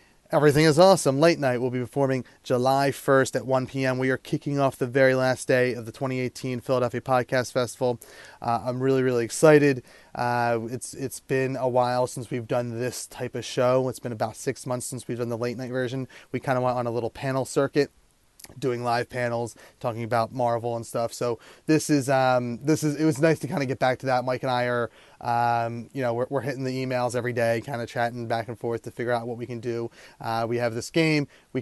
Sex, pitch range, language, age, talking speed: male, 120-135 Hz, English, 30-49, 235 wpm